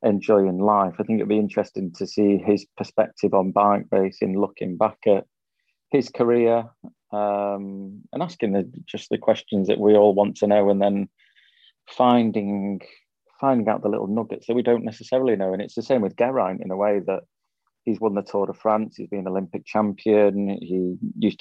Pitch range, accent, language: 100-115 Hz, British, English